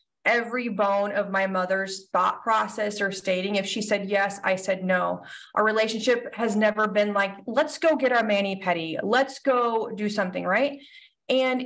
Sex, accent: female, American